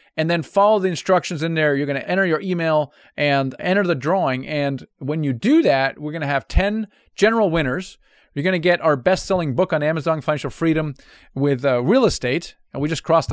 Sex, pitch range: male, 140-185 Hz